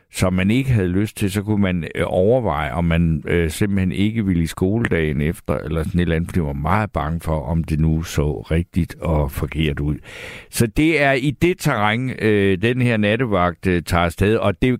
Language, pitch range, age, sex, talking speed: Danish, 90-120 Hz, 60-79, male, 220 wpm